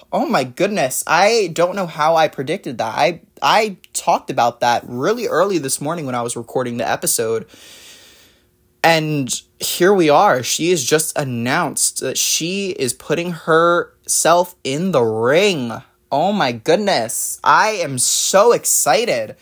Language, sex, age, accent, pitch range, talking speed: English, male, 20-39, American, 125-170 Hz, 150 wpm